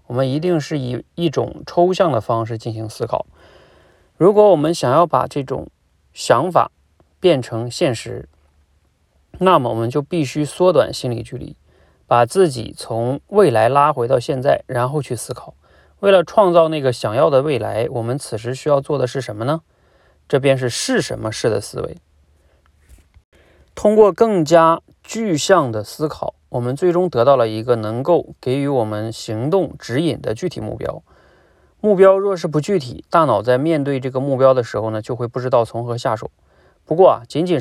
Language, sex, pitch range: Chinese, male, 115-160 Hz